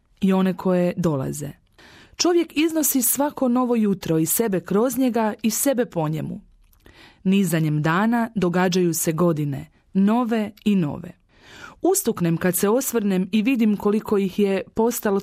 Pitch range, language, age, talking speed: 175-240 Hz, Croatian, 30-49, 140 wpm